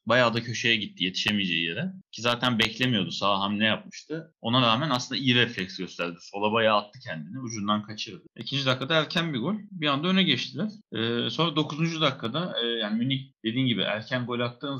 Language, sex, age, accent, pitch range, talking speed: Turkish, male, 30-49, native, 110-145 Hz, 185 wpm